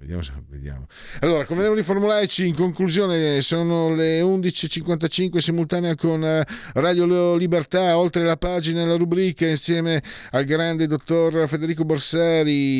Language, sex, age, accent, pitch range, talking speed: Italian, male, 40-59, native, 105-160 Hz, 135 wpm